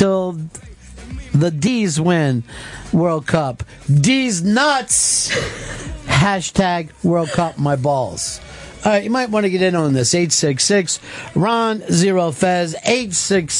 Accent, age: American, 50-69